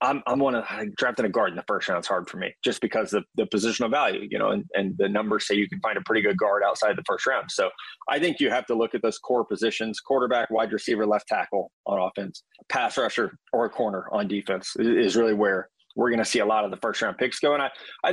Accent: American